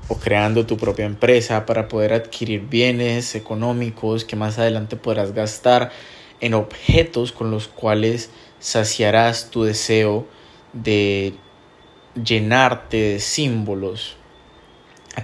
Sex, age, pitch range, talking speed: male, 20-39, 105-115 Hz, 110 wpm